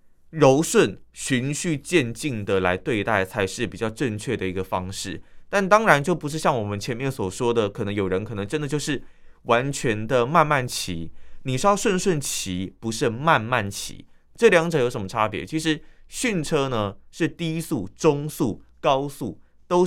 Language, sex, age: Chinese, male, 20-39